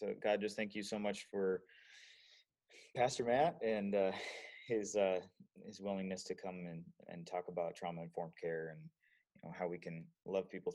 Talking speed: 180 wpm